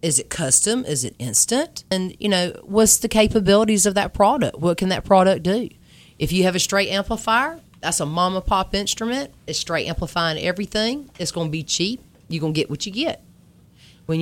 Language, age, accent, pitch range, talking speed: English, 30-49, American, 160-205 Hz, 205 wpm